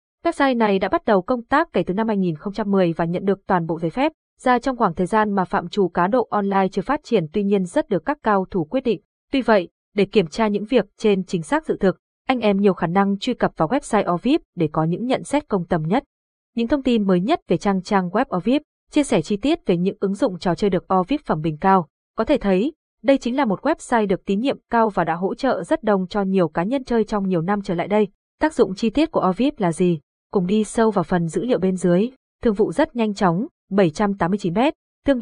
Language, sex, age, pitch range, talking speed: Vietnamese, female, 20-39, 185-240 Hz, 255 wpm